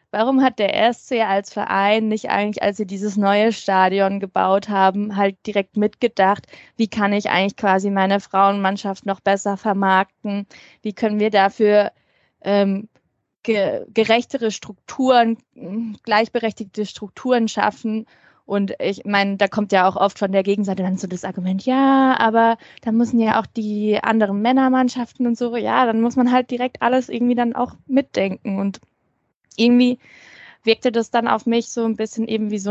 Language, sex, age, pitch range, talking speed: German, female, 20-39, 200-240 Hz, 160 wpm